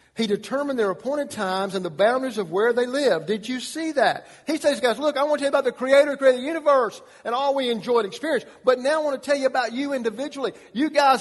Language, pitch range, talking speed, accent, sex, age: English, 205-280 Hz, 260 wpm, American, male, 50-69